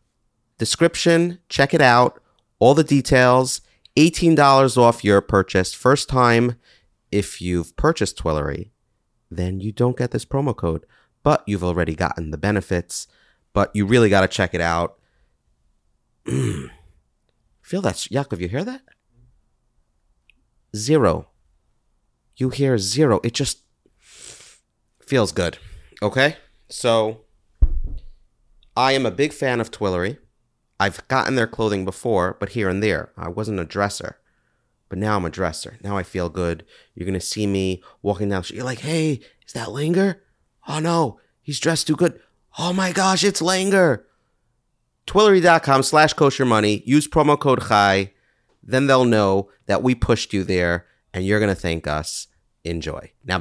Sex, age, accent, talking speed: male, 30-49, American, 150 wpm